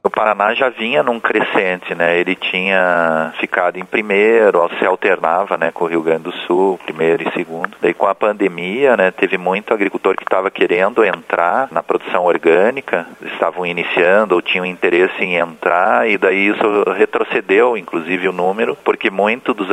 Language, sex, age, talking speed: Portuguese, male, 40-59, 175 wpm